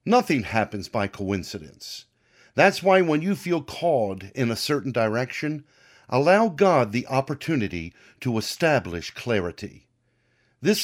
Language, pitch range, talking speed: English, 110-160 Hz, 120 wpm